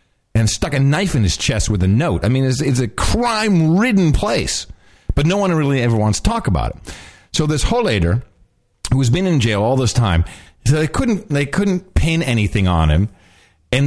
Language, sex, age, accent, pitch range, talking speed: English, male, 40-59, American, 100-155 Hz, 205 wpm